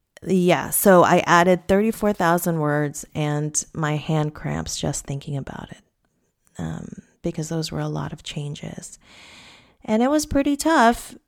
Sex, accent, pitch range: female, American, 155-190 Hz